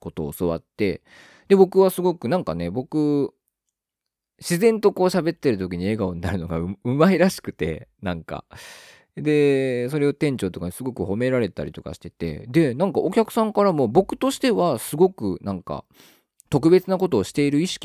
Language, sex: Japanese, male